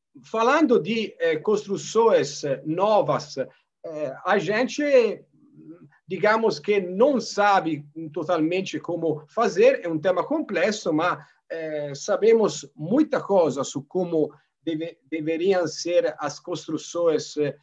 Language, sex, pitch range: Portuguese, male, 165-250 Hz